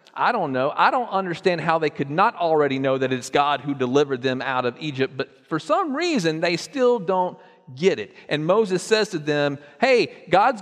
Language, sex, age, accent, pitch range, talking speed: English, male, 40-59, American, 125-200 Hz, 210 wpm